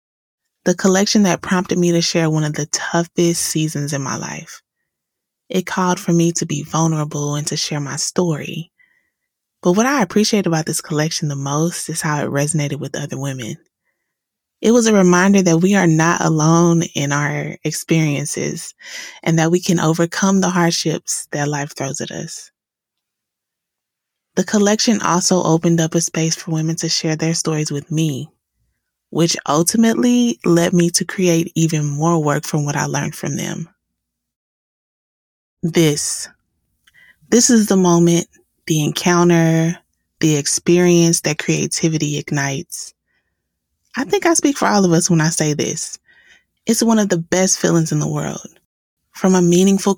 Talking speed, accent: 160 wpm, American